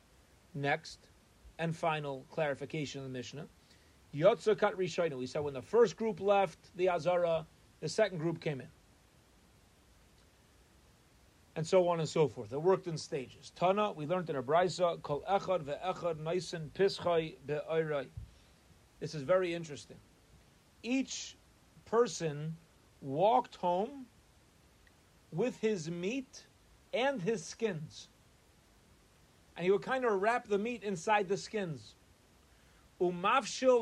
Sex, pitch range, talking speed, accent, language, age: male, 130-200 Hz, 115 wpm, American, English, 40-59